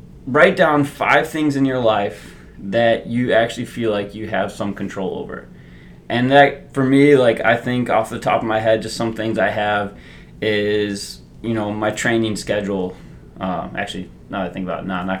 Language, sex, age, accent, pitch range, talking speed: English, male, 20-39, American, 100-125 Hz, 195 wpm